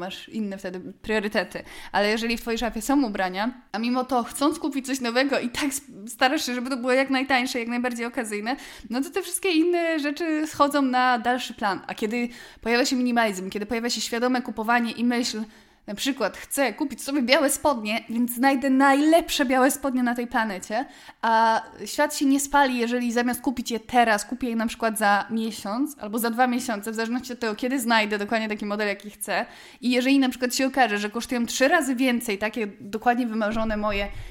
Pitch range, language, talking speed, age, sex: 225-275 Hz, Polish, 200 wpm, 20-39, female